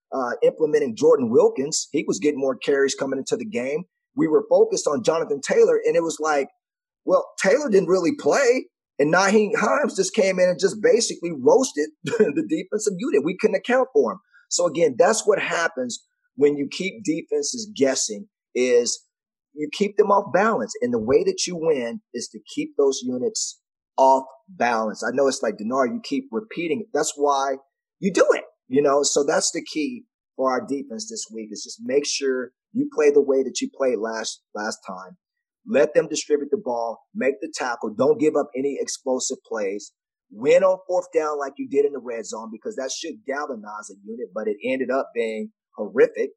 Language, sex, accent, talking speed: English, male, American, 195 wpm